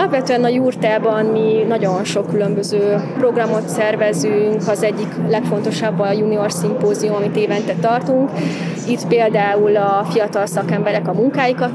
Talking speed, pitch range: 130 wpm, 200-220 Hz